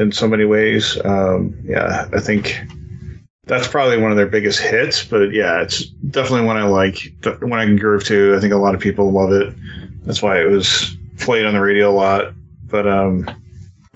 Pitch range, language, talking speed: 100-110 Hz, English, 200 wpm